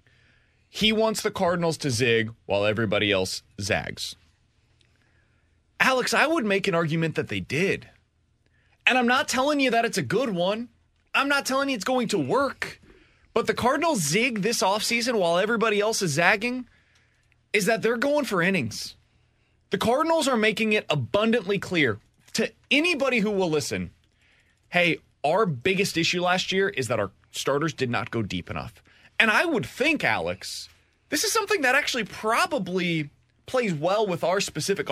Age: 30-49